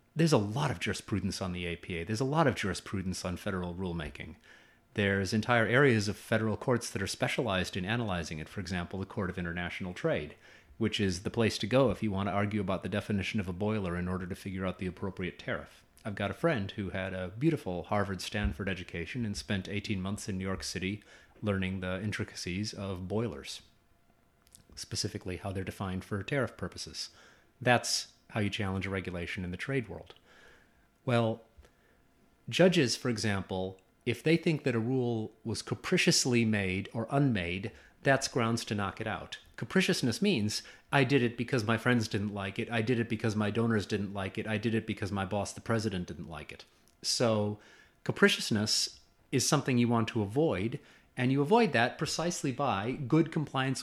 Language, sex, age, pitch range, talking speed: English, male, 30-49, 95-120 Hz, 185 wpm